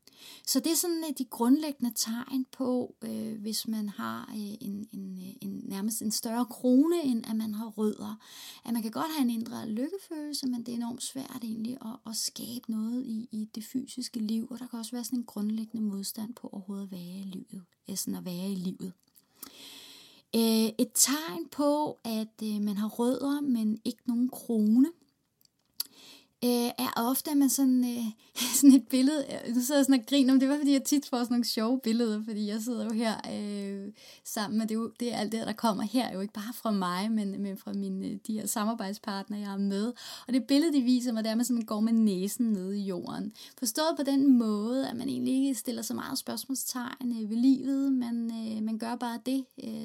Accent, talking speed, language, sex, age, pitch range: native, 200 wpm, Danish, female, 30-49, 215-255 Hz